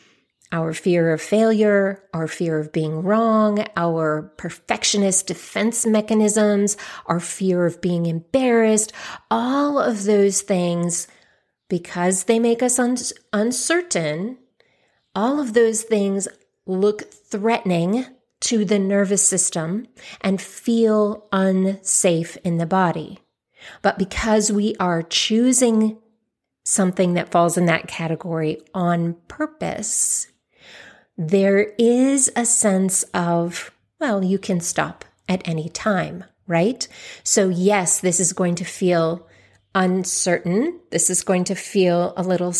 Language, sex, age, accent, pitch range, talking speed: English, female, 30-49, American, 175-215 Hz, 120 wpm